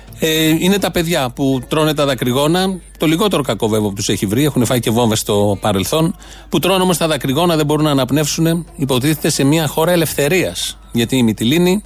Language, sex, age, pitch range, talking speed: Greek, male, 40-59, 120-160 Hz, 190 wpm